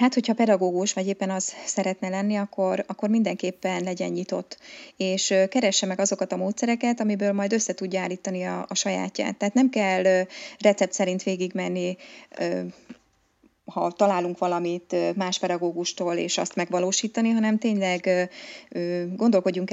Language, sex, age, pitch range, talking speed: Hungarian, female, 20-39, 180-205 Hz, 135 wpm